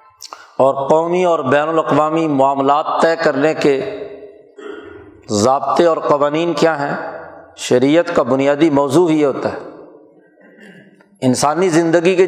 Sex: male